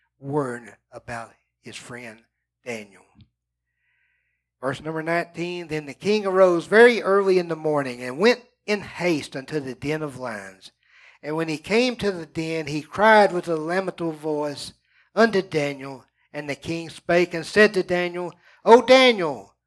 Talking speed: 155 wpm